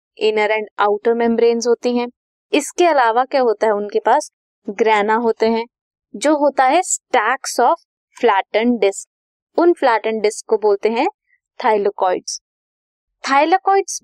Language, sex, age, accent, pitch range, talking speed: Hindi, female, 20-39, native, 220-305 Hz, 130 wpm